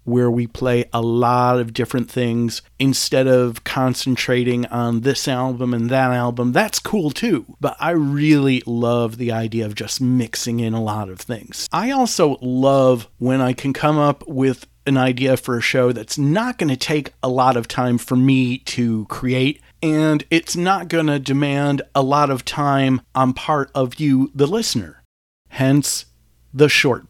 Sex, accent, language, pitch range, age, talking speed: male, American, English, 120-150 Hz, 40-59, 175 wpm